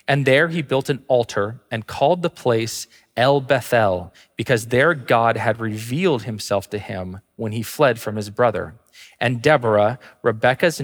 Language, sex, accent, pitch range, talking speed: English, male, American, 105-125 Hz, 160 wpm